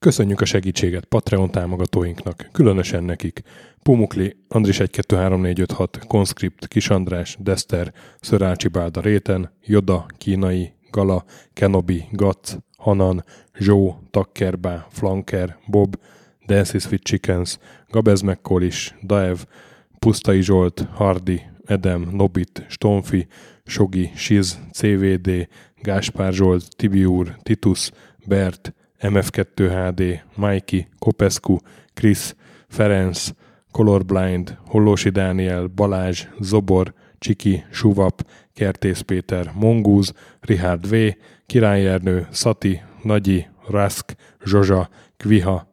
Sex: male